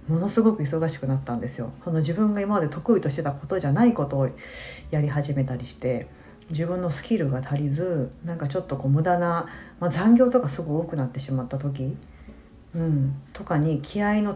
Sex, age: female, 40-59